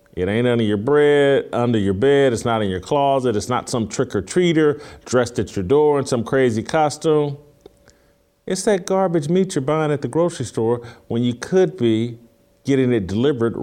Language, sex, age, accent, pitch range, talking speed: English, male, 40-59, American, 100-145 Hz, 185 wpm